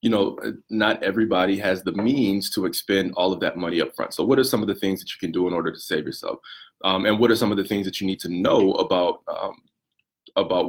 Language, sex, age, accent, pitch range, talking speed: English, male, 20-39, American, 90-105 Hz, 260 wpm